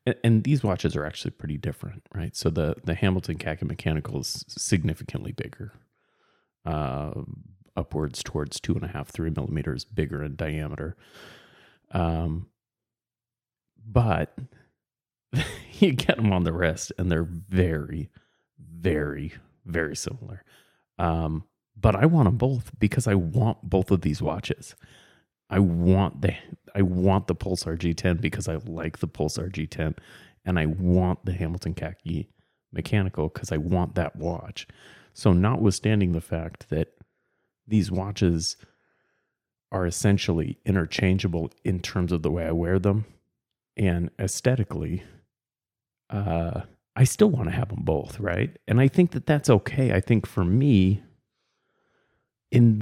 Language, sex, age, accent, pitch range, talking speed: English, male, 30-49, American, 80-110 Hz, 140 wpm